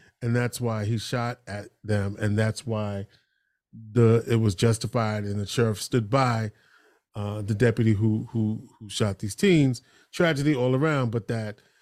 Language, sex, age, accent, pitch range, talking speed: English, male, 30-49, American, 110-135 Hz, 170 wpm